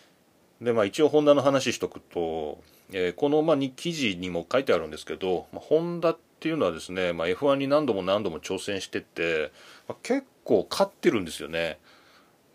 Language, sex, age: Japanese, male, 30-49